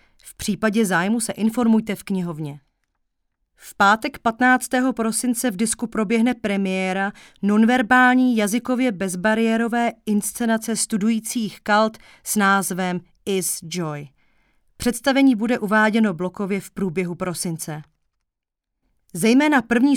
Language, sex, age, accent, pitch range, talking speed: Czech, female, 30-49, native, 180-235 Hz, 100 wpm